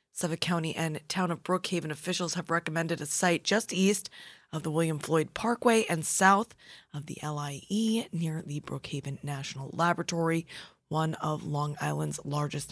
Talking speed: 155 wpm